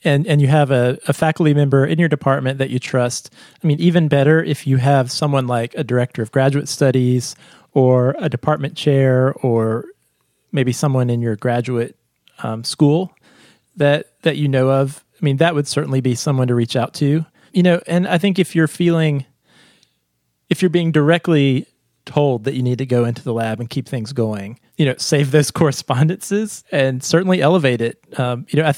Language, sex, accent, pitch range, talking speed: English, male, American, 130-160 Hz, 195 wpm